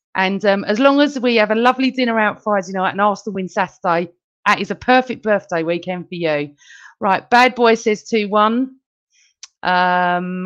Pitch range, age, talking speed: 180-235 Hz, 40-59, 185 wpm